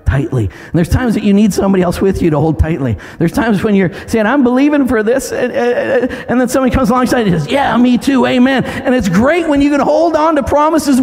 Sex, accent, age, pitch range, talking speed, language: male, American, 50-69, 225-320 Hz, 245 wpm, English